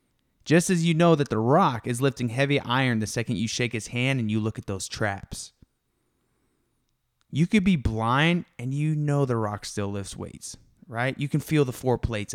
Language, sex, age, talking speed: English, male, 20-39, 205 wpm